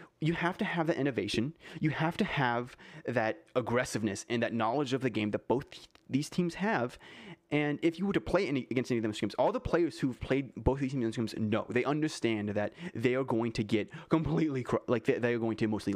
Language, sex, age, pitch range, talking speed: English, male, 30-49, 115-155 Hz, 225 wpm